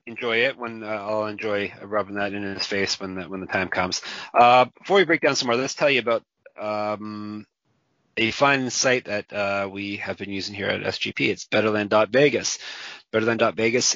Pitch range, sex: 100-125 Hz, male